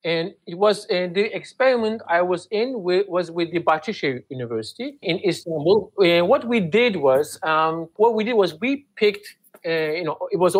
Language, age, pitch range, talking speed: English, 50-69, 160-215 Hz, 185 wpm